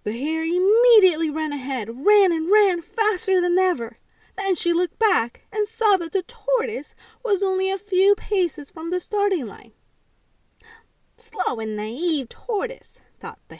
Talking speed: 155 wpm